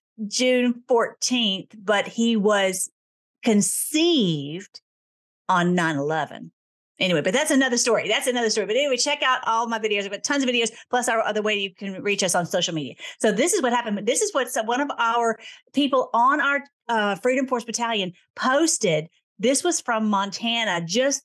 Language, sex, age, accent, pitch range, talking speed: English, female, 40-59, American, 205-255 Hz, 175 wpm